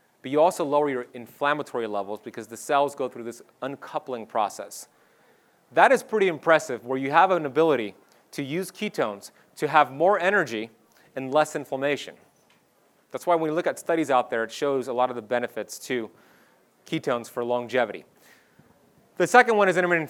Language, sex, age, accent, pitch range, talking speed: English, male, 30-49, American, 130-165 Hz, 175 wpm